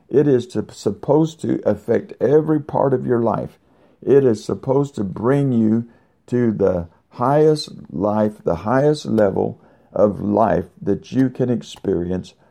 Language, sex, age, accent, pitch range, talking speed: English, male, 60-79, American, 105-130 Hz, 145 wpm